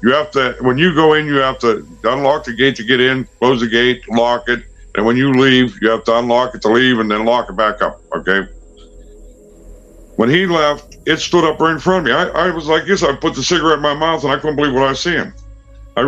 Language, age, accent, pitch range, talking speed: English, 60-79, American, 120-155 Hz, 265 wpm